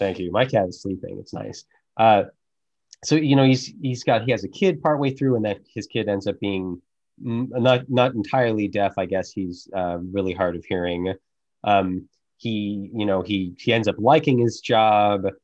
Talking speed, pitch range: 200 wpm, 95-130 Hz